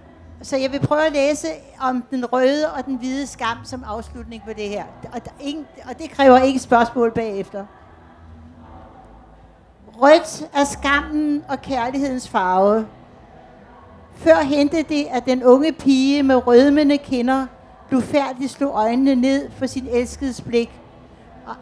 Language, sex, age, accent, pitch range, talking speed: Danish, female, 60-79, native, 225-270 Hz, 145 wpm